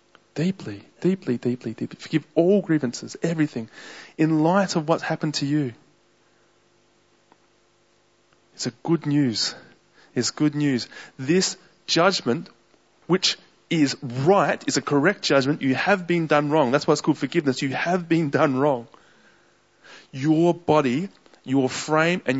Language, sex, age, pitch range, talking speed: English, male, 30-49, 120-170 Hz, 135 wpm